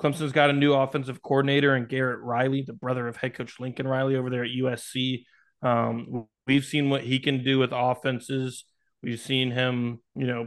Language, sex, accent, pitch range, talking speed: English, male, American, 125-140 Hz, 195 wpm